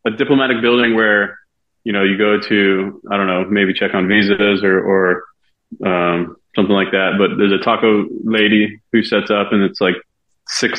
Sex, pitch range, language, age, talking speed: male, 95-110 Hz, English, 30-49, 180 wpm